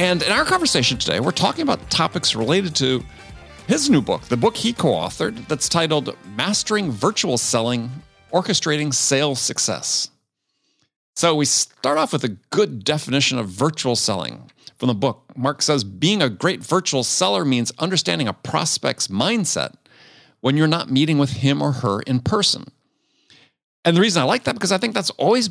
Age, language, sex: 50-69, English, male